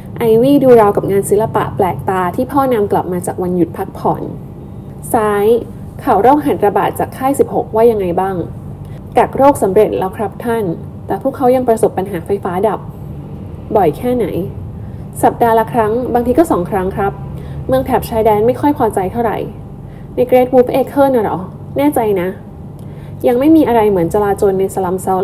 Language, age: Thai, 10-29